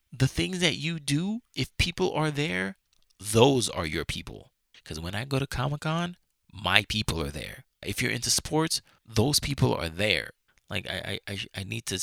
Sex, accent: male, American